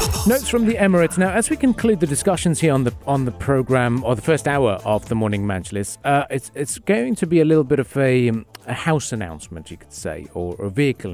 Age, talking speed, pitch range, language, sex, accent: 40-59, 240 wpm, 105-140 Hz, English, male, British